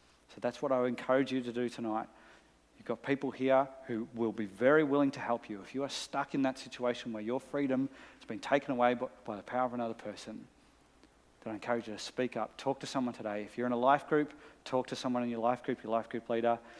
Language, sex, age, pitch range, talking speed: English, male, 40-59, 110-130 Hz, 245 wpm